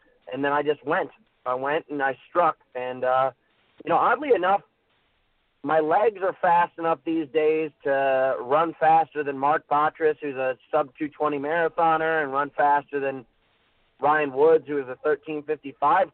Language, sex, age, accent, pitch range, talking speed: English, male, 40-59, American, 135-160 Hz, 160 wpm